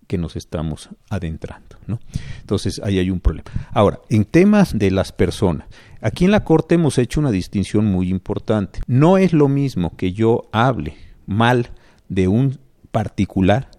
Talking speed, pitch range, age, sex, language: 160 wpm, 95-130 Hz, 50-69, male, Spanish